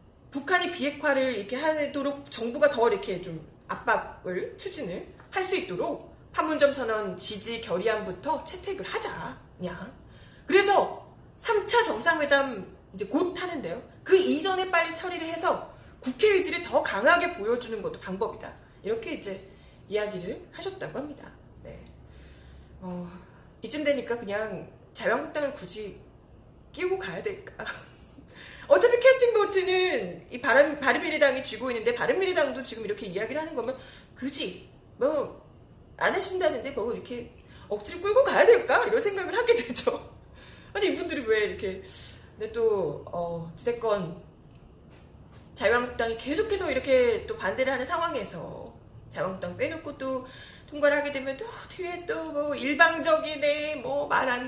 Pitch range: 235-370 Hz